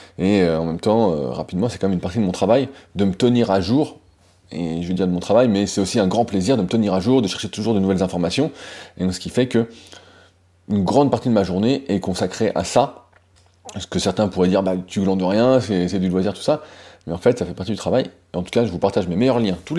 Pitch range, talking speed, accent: 95-120 Hz, 290 wpm, French